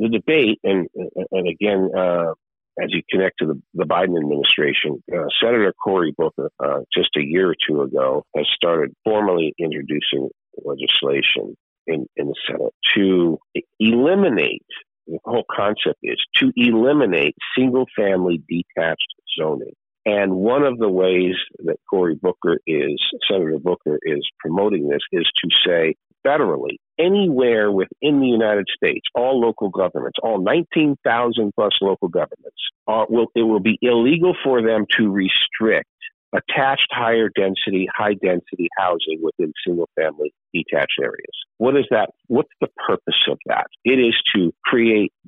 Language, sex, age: English, male, 50-69